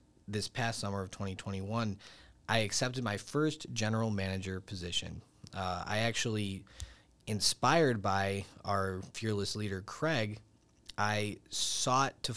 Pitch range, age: 95-110 Hz, 20-39